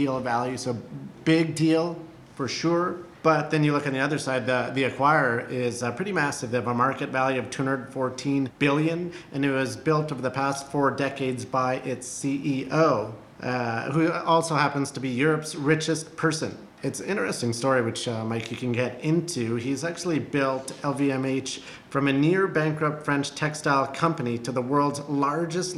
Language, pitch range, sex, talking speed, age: English, 125-145 Hz, male, 175 wpm, 40-59